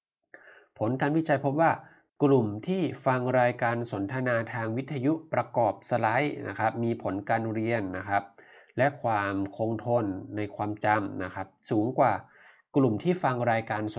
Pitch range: 105-130 Hz